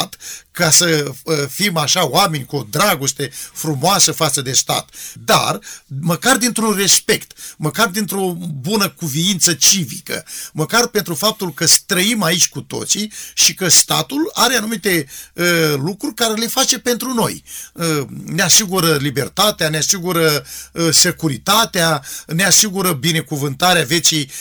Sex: male